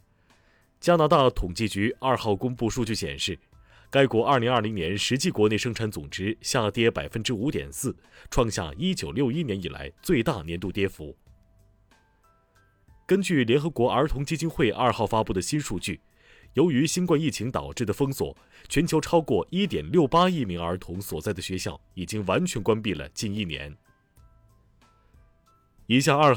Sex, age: male, 30-49